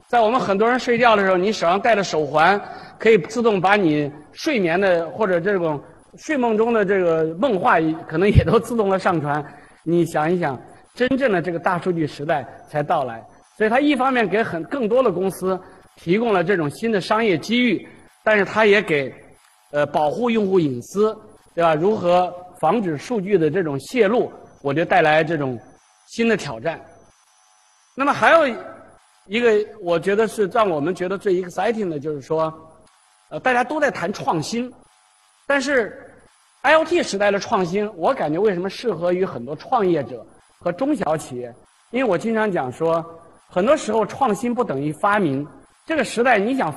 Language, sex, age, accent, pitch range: Chinese, male, 50-69, native, 160-235 Hz